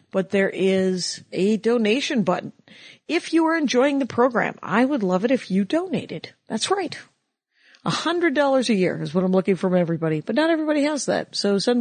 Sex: female